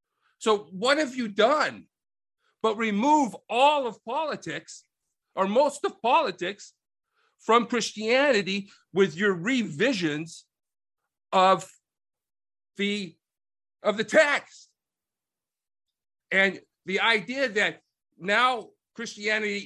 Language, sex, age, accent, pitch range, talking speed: English, male, 50-69, American, 185-255 Hz, 90 wpm